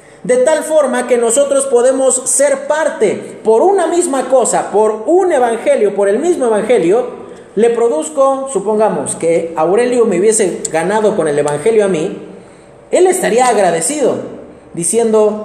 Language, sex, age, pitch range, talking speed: Spanish, male, 40-59, 160-265 Hz, 140 wpm